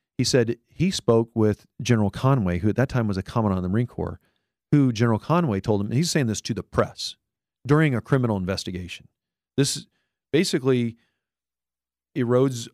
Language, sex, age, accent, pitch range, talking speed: English, male, 40-59, American, 95-120 Hz, 175 wpm